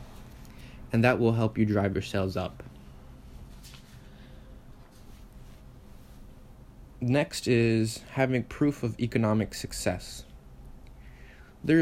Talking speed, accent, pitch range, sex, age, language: 85 wpm, American, 95-125 Hz, male, 20-39, English